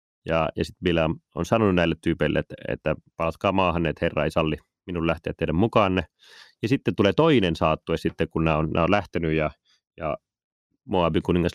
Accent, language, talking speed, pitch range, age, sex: native, Finnish, 185 wpm, 80-95 Hz, 30-49, male